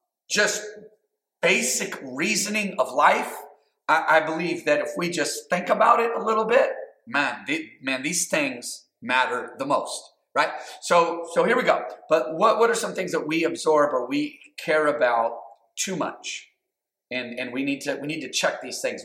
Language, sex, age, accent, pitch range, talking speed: English, male, 40-59, American, 130-210 Hz, 185 wpm